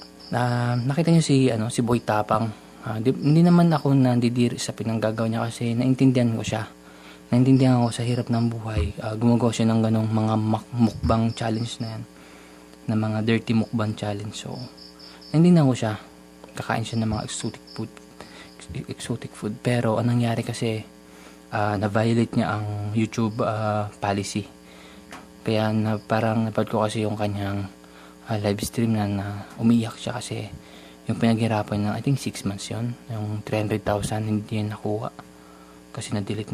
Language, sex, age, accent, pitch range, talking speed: Filipino, male, 20-39, native, 100-115 Hz, 165 wpm